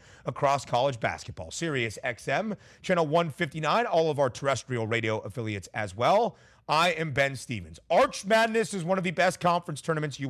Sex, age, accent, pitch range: male, 30-49, American, 125-180 Hz